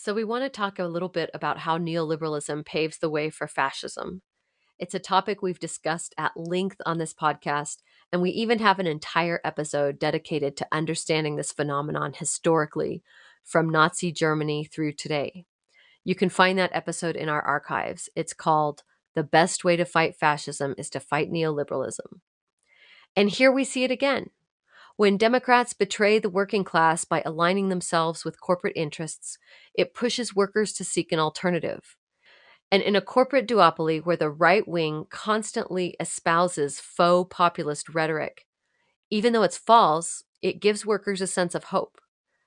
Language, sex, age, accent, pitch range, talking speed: English, female, 30-49, American, 155-195 Hz, 160 wpm